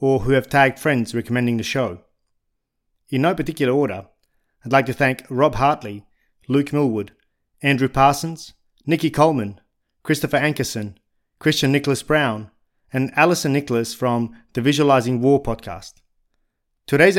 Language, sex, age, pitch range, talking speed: English, male, 30-49, 115-145 Hz, 130 wpm